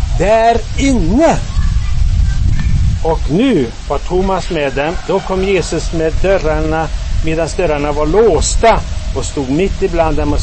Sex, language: male, Swedish